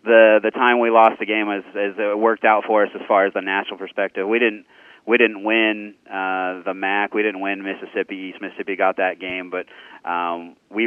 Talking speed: 220 wpm